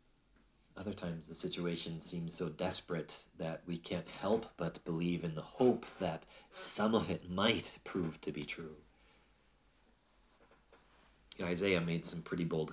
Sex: male